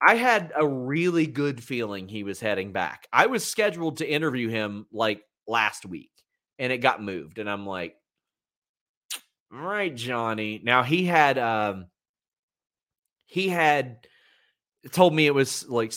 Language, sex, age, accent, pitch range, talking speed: English, male, 30-49, American, 115-150 Hz, 150 wpm